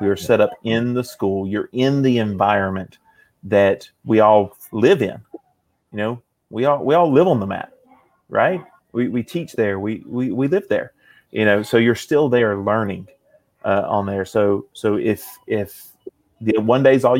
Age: 30-49